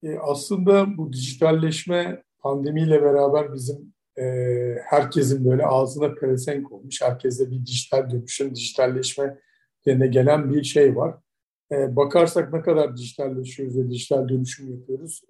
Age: 50-69